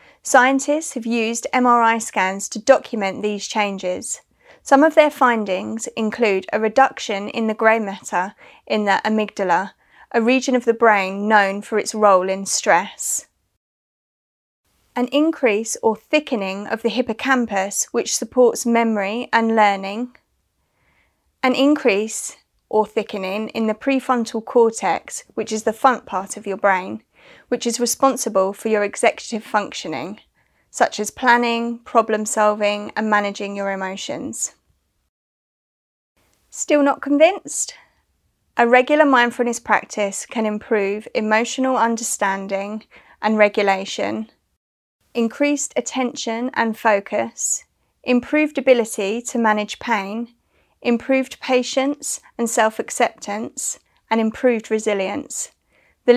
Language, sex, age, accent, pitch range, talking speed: English, female, 30-49, British, 205-250 Hz, 115 wpm